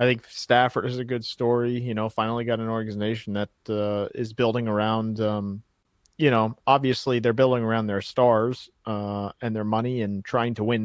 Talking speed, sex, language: 195 wpm, male, English